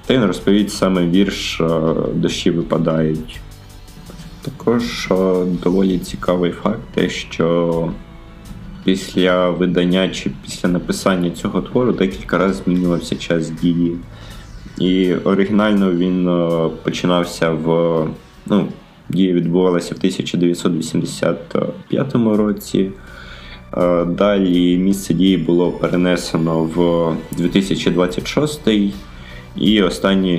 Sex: male